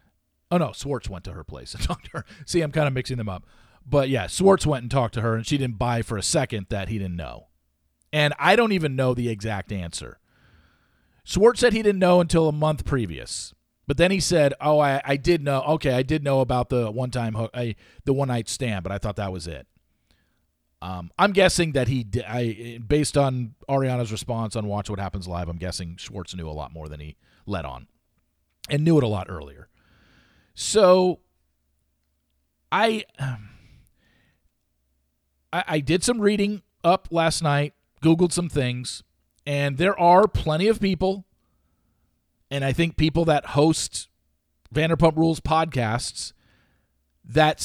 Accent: American